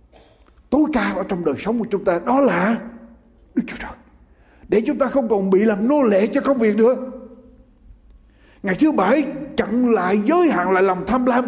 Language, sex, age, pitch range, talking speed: Ukrainian, male, 60-79, 175-255 Hz, 200 wpm